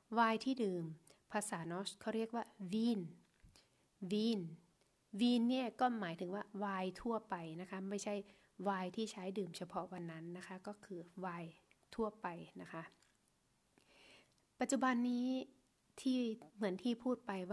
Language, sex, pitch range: Thai, female, 180-220 Hz